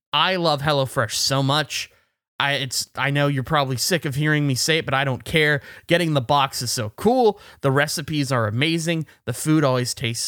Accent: American